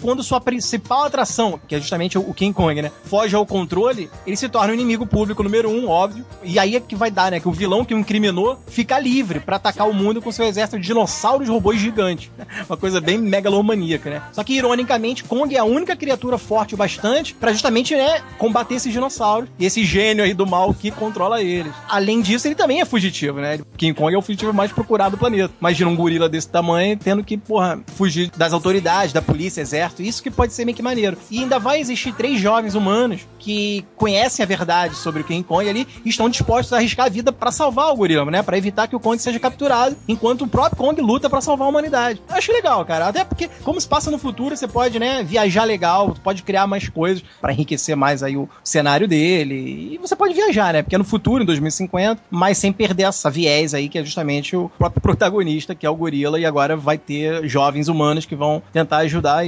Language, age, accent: Portuguese, 30-49, Brazilian